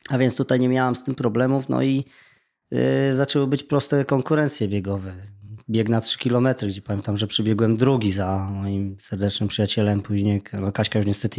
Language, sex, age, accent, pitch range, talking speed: Polish, male, 20-39, native, 105-120 Hz, 180 wpm